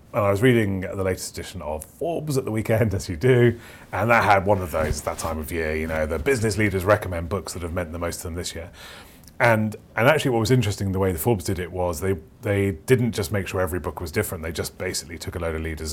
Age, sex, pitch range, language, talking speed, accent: 30-49, male, 85-110 Hz, English, 270 wpm, British